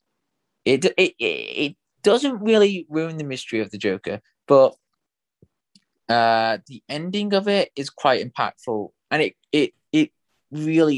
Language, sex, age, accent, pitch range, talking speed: English, male, 20-39, British, 110-145 Hz, 135 wpm